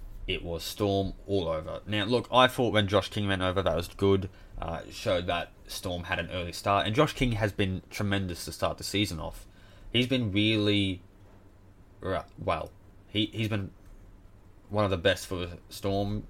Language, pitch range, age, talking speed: English, 90-105 Hz, 20-39, 175 wpm